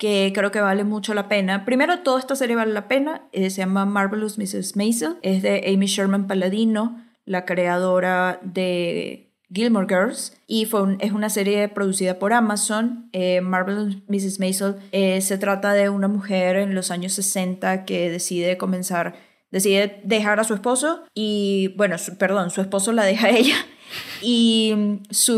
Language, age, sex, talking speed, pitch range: English, 10-29, female, 165 wpm, 190-220 Hz